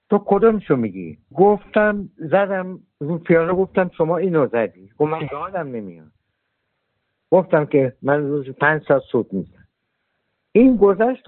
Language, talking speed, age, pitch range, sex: Persian, 135 wpm, 60-79, 135-195 Hz, male